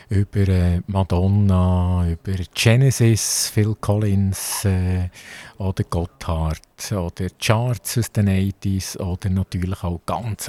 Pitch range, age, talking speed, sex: 95-125 Hz, 50-69, 105 wpm, male